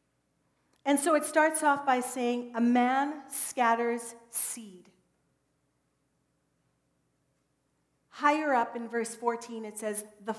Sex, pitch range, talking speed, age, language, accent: female, 225-285 Hz, 110 wpm, 40-59, English, American